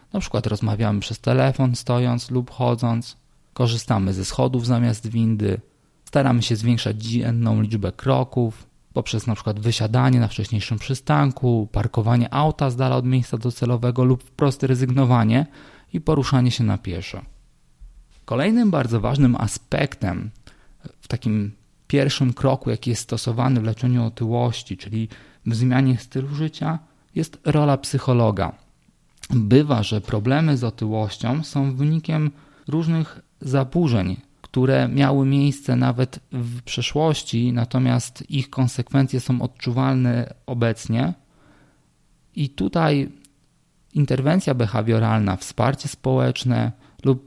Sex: male